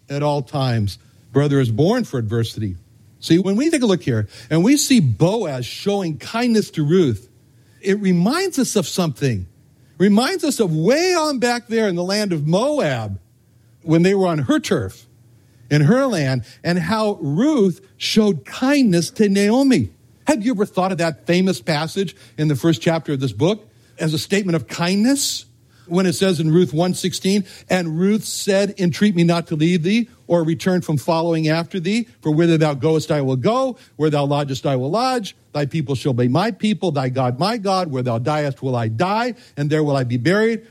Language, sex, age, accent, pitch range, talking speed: English, male, 60-79, American, 130-200 Hz, 195 wpm